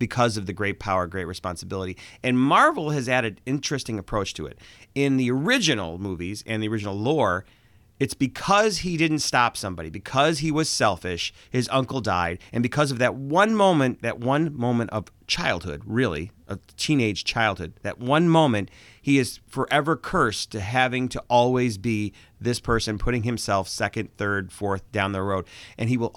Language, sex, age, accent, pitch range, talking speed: English, male, 30-49, American, 105-140 Hz, 175 wpm